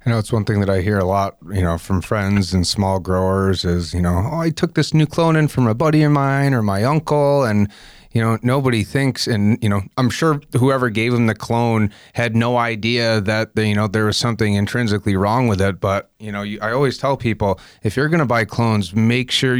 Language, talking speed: English, 240 wpm